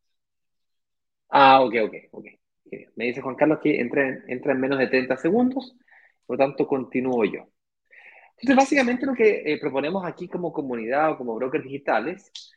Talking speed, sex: 165 wpm, male